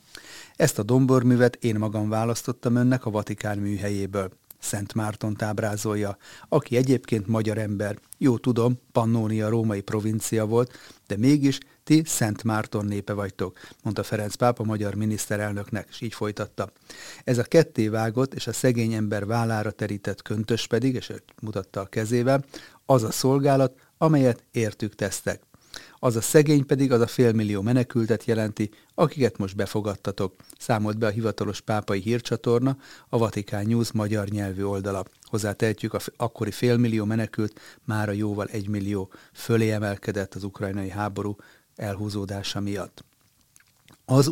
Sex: male